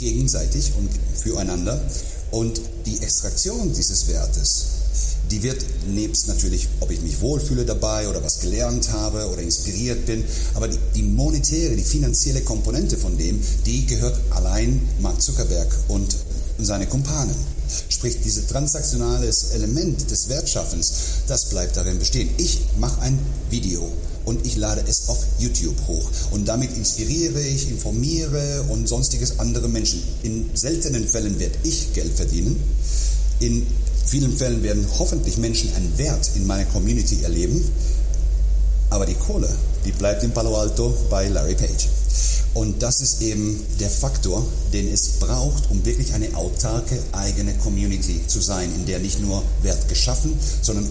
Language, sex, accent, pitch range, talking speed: German, male, German, 80-115 Hz, 145 wpm